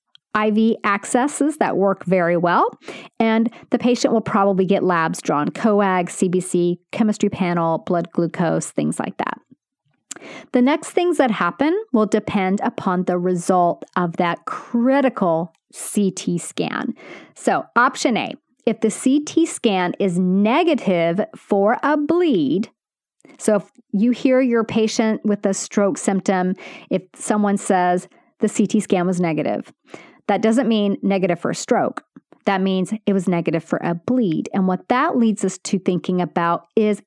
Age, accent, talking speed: 40-59, American, 150 wpm